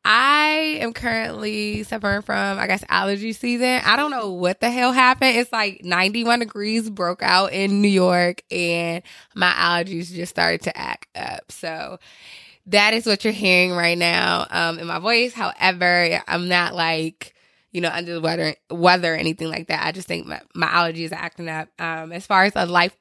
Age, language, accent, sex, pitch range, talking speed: 20-39, English, American, female, 170-210 Hz, 195 wpm